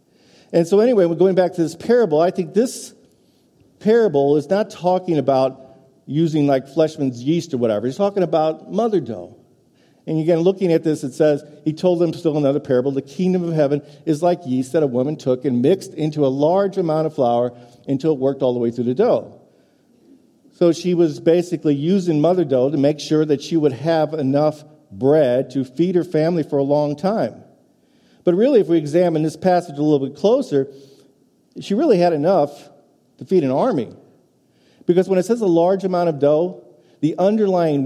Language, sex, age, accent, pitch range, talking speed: English, male, 50-69, American, 135-175 Hz, 195 wpm